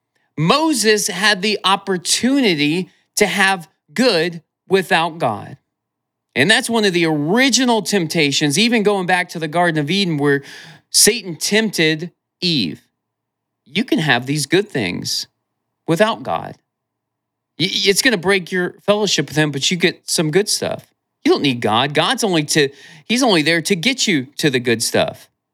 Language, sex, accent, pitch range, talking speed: English, male, American, 130-190 Hz, 155 wpm